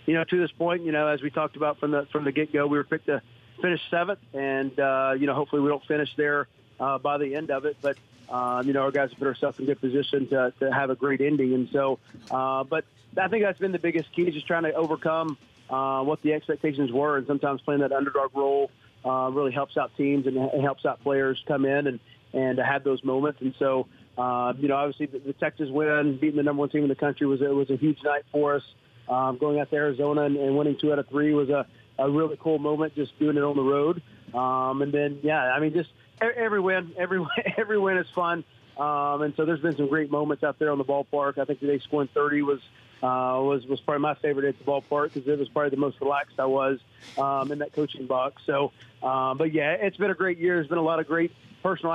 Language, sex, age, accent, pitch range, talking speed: English, male, 40-59, American, 135-150 Hz, 250 wpm